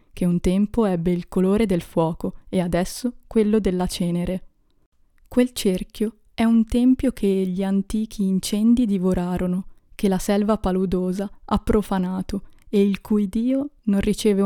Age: 20-39